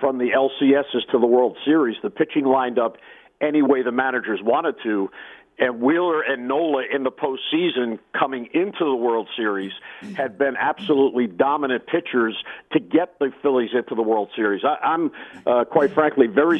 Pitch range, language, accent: 125-165 Hz, English, American